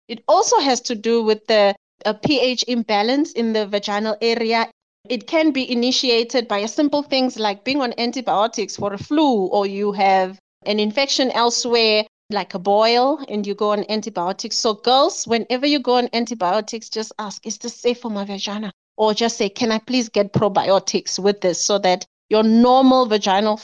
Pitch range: 205-255 Hz